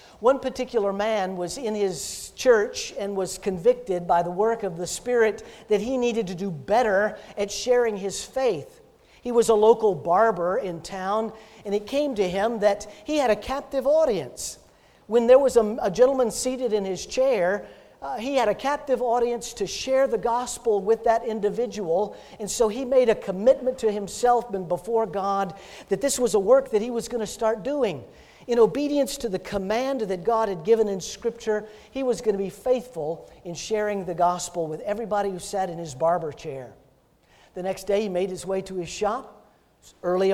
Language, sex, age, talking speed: English, male, 50-69, 195 wpm